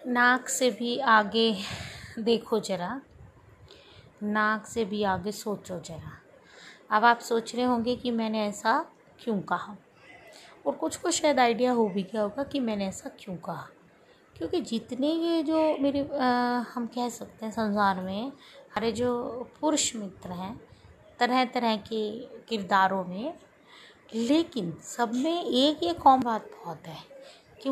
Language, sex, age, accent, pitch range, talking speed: Hindi, female, 20-39, native, 200-255 Hz, 145 wpm